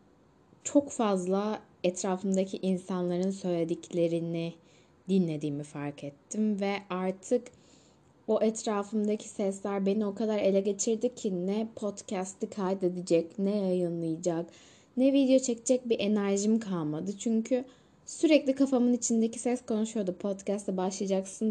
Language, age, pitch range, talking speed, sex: Turkish, 10-29, 175-220 Hz, 105 wpm, female